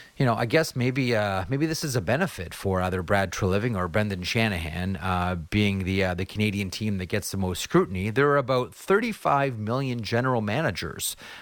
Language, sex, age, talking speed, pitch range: English, male, 30-49, 195 wpm, 90-125 Hz